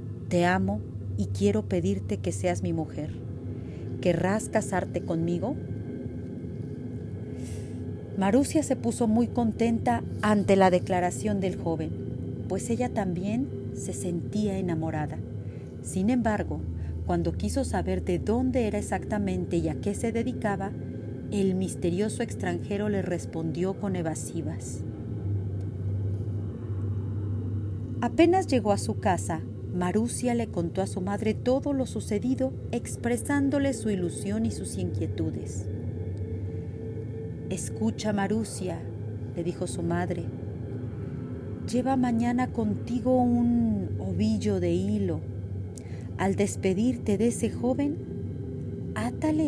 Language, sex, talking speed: Spanish, female, 105 wpm